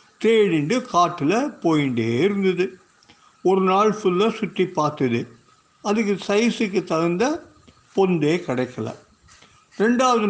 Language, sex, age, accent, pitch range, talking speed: Tamil, male, 50-69, native, 155-205 Hz, 85 wpm